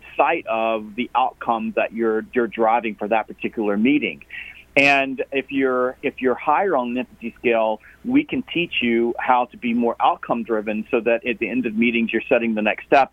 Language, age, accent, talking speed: English, 40-59, American, 200 wpm